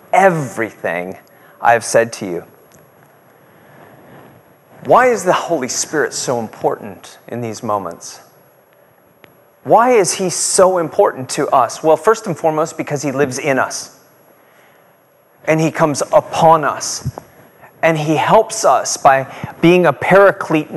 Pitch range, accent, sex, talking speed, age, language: 165-220 Hz, American, male, 130 wpm, 30-49, English